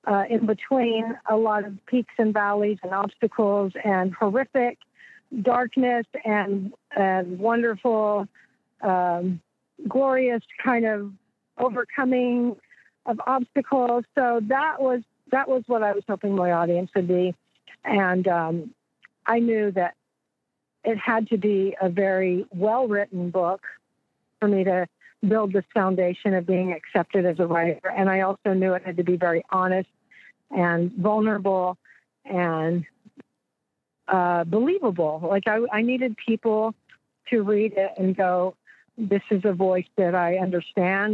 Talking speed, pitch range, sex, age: 135 wpm, 185-225 Hz, female, 50-69